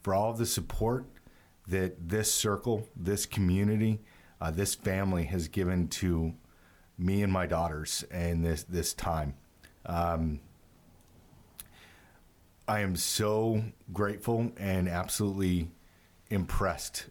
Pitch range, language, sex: 85-105 Hz, English, male